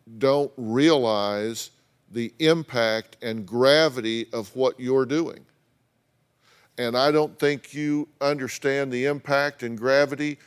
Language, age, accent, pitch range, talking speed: English, 50-69, American, 120-155 Hz, 115 wpm